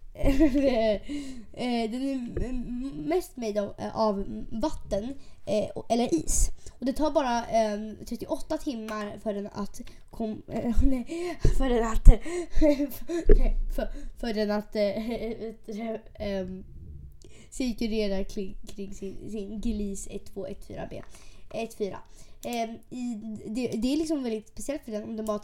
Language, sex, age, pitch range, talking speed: Swedish, female, 20-39, 205-250 Hz, 110 wpm